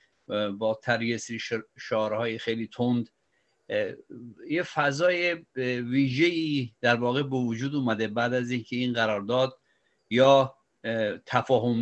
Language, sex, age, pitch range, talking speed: Persian, male, 50-69, 120-155 Hz, 105 wpm